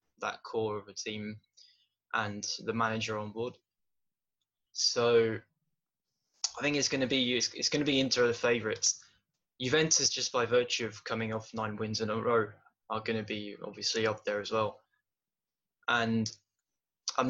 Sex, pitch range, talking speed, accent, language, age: male, 110-125 Hz, 165 wpm, British, English, 10-29